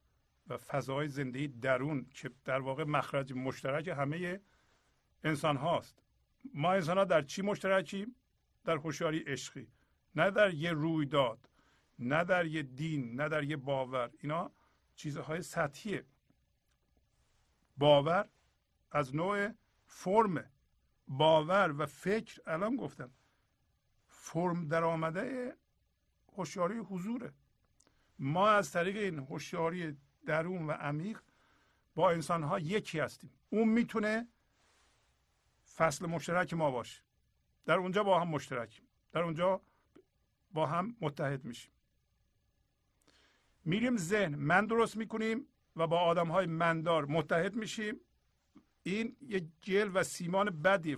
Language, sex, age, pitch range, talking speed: Persian, male, 50-69, 145-195 Hz, 115 wpm